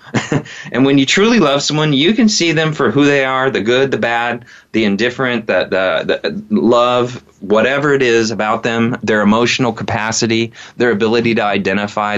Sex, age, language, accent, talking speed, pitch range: male, 30-49, English, American, 175 wpm, 105-130 Hz